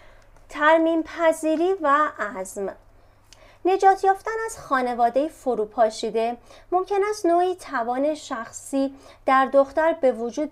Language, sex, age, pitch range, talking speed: Persian, female, 30-49, 235-335 Hz, 95 wpm